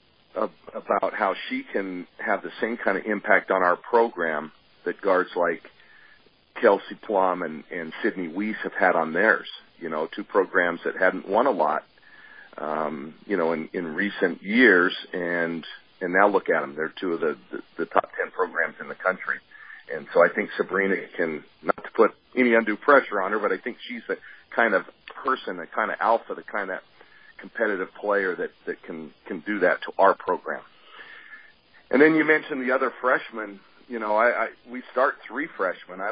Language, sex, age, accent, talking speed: English, male, 40-59, American, 195 wpm